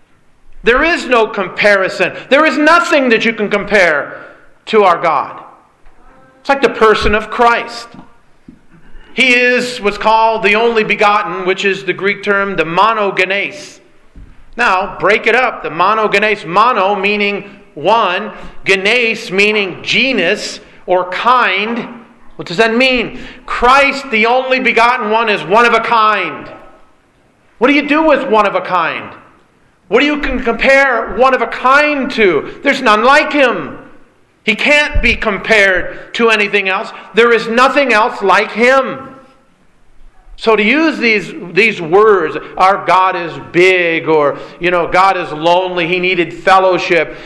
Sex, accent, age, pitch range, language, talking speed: male, American, 40-59, 190-245 Hz, English, 150 wpm